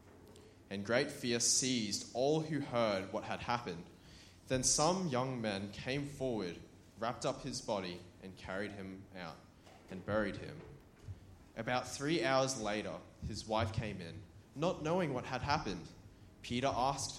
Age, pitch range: 20-39, 95-125 Hz